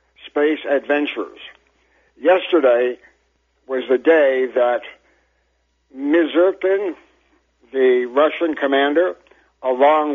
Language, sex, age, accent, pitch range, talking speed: English, male, 60-79, American, 130-165 Hz, 70 wpm